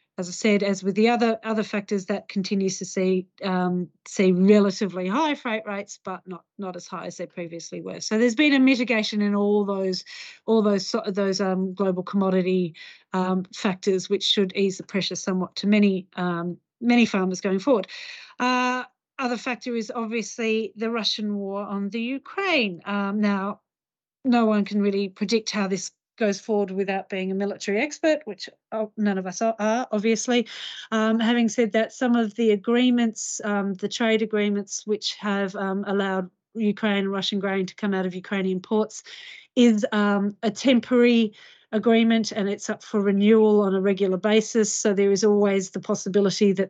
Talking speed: 175 wpm